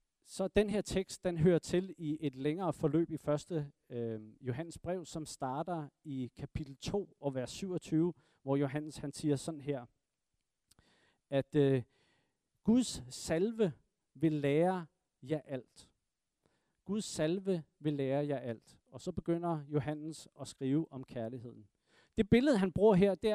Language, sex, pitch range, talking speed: Danish, male, 140-195 Hz, 145 wpm